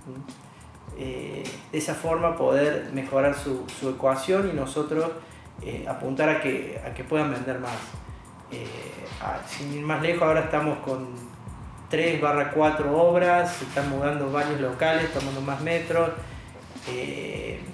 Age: 30-49